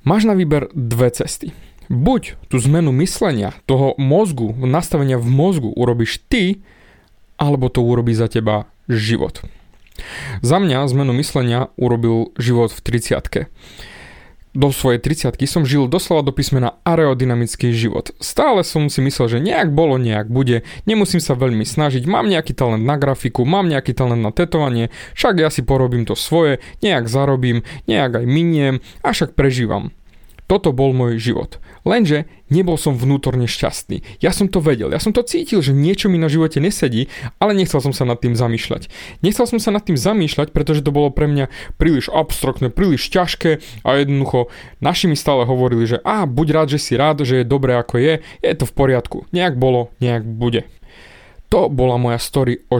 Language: Slovak